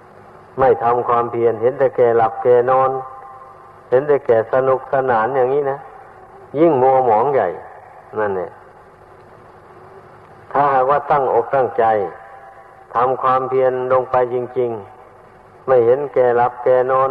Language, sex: Thai, male